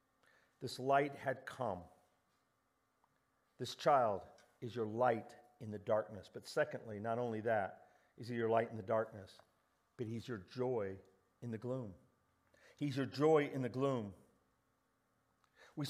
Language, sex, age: English, male, 50-69